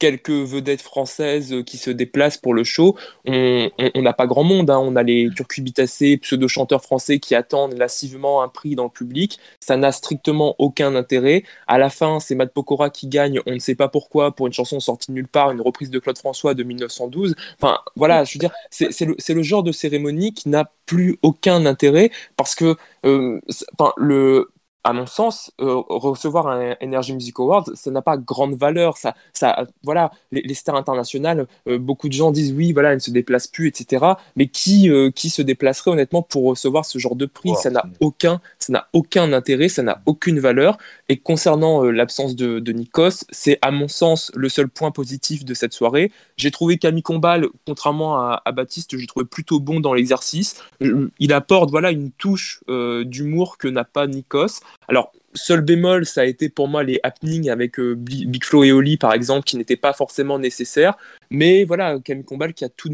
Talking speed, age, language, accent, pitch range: 205 wpm, 20-39, French, French, 130-155 Hz